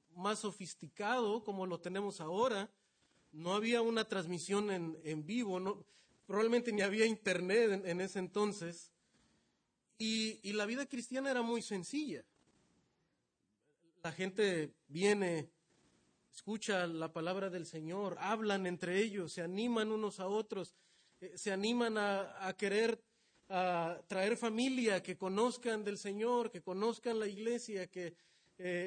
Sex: male